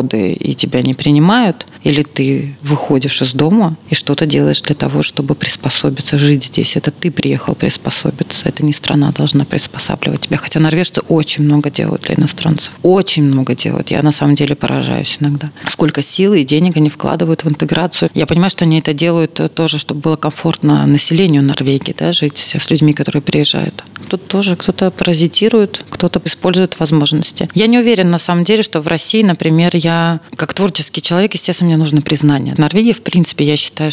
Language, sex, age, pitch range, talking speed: Russian, female, 30-49, 150-175 Hz, 175 wpm